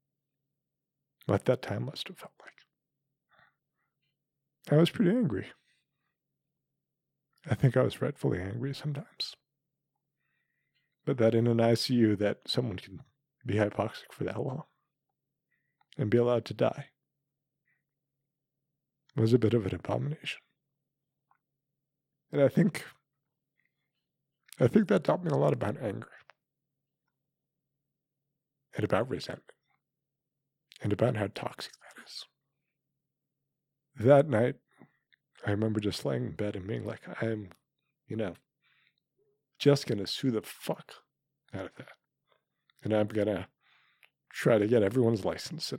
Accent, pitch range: American, 110-145 Hz